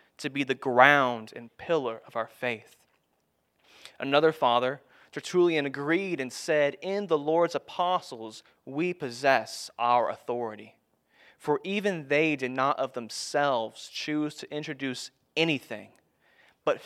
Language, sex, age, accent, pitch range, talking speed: English, male, 20-39, American, 120-155 Hz, 125 wpm